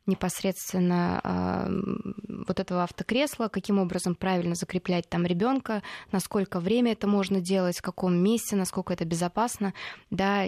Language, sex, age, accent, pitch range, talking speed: Russian, female, 20-39, native, 185-215 Hz, 130 wpm